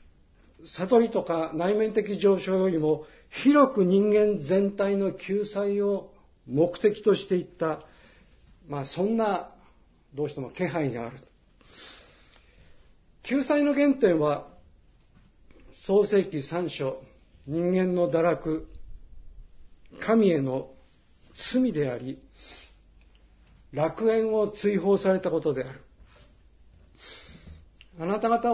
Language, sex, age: Japanese, male, 60-79